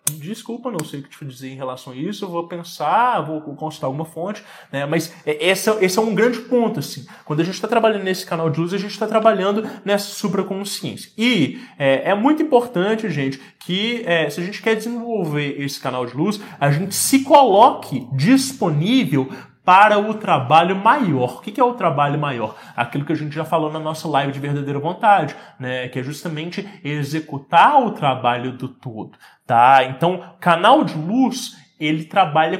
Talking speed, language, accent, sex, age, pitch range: 185 wpm, English, Brazilian, male, 20-39, 140-210 Hz